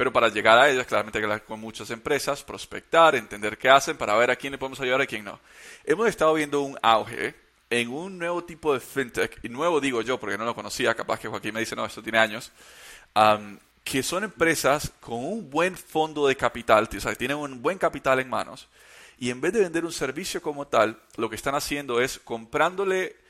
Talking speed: 220 wpm